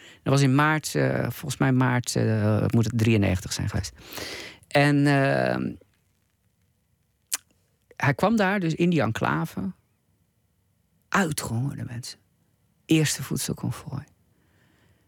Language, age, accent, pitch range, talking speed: Dutch, 50-69, Dutch, 100-135 Hz, 105 wpm